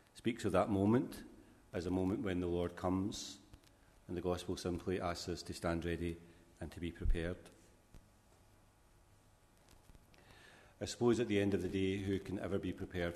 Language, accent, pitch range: English, British, 90-100 Hz